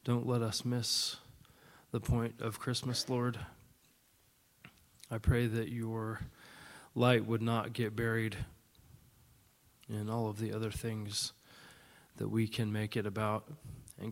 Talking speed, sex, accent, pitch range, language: 130 wpm, male, American, 110-120 Hz, English